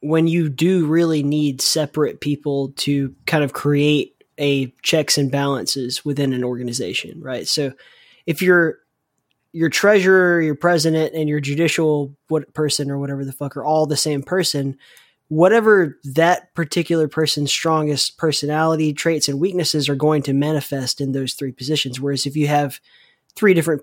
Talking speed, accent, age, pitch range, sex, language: 160 wpm, American, 20-39, 140-160 Hz, male, English